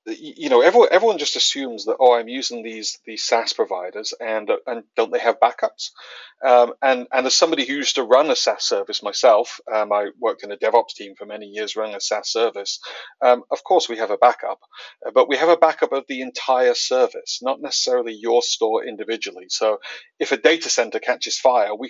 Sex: male